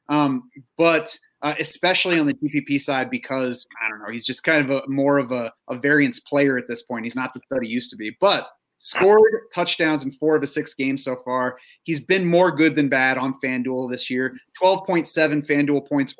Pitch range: 125-155 Hz